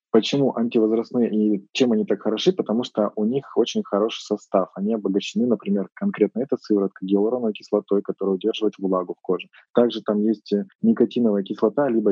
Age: 20-39